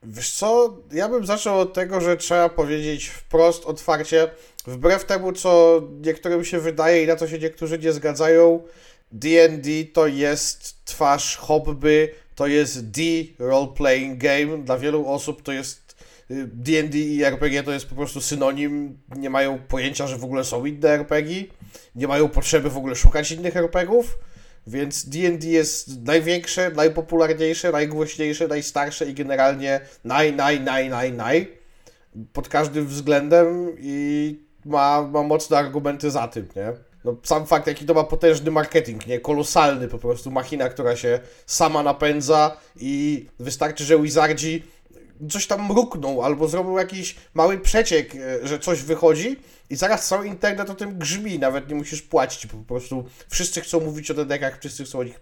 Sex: male